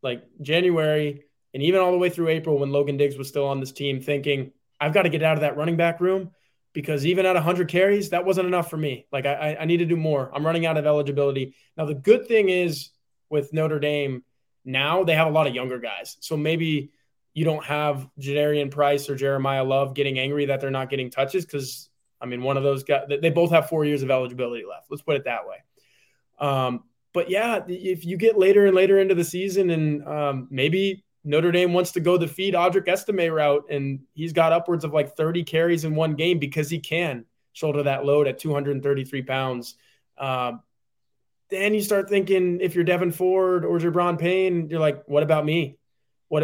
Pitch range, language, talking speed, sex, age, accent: 140-175 Hz, English, 215 wpm, male, 20-39, American